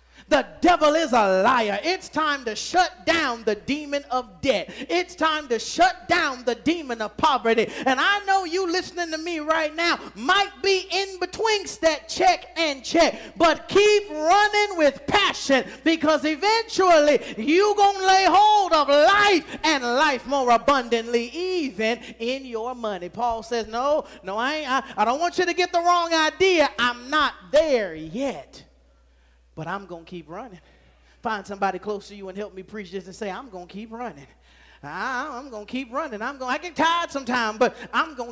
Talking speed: 190 wpm